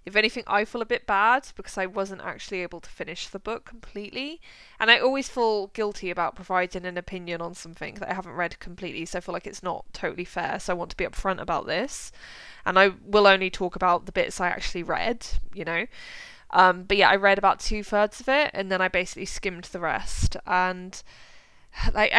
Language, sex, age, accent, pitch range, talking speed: English, female, 10-29, British, 180-230 Hz, 220 wpm